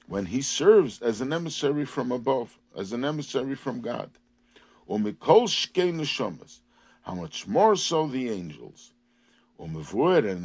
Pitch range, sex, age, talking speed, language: 120-180 Hz, male, 50-69, 120 wpm, English